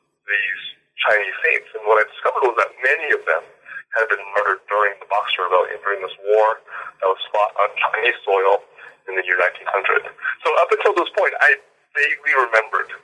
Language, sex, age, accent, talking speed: English, male, 40-59, American, 185 wpm